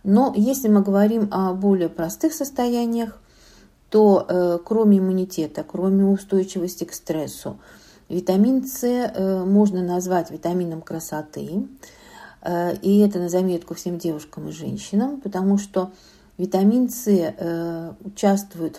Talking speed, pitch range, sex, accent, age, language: 120 wpm, 175-205 Hz, female, native, 50-69, Russian